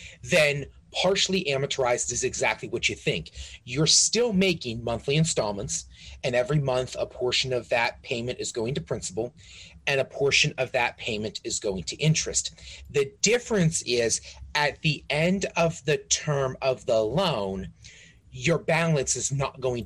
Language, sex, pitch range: English, male, 110-140 Hz